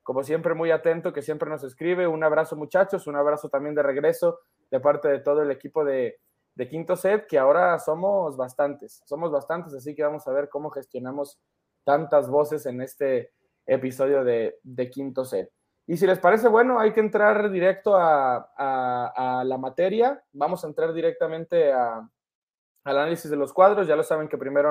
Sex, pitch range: male, 145-205 Hz